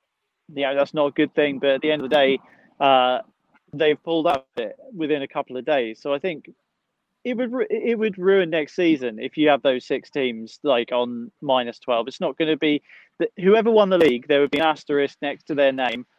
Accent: British